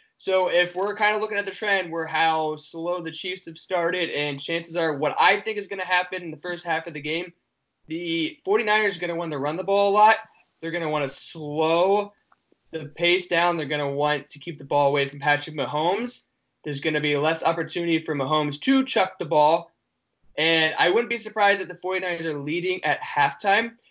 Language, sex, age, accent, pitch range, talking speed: English, male, 20-39, American, 150-185 Hz, 225 wpm